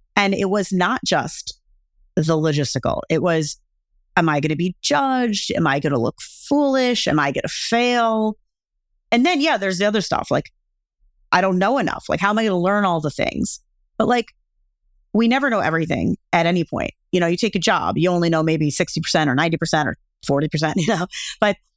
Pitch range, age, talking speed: 160-200 Hz, 30-49, 205 wpm